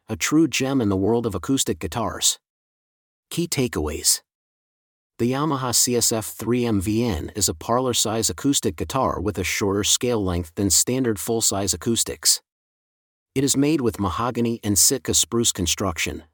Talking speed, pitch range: 145 wpm, 100-125 Hz